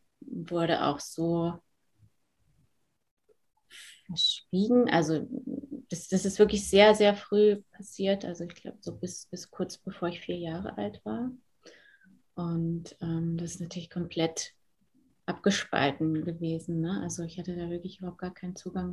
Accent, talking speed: German, 140 wpm